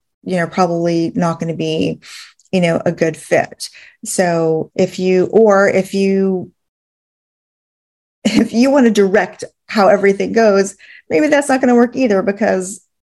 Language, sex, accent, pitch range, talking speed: English, female, American, 170-200 Hz, 155 wpm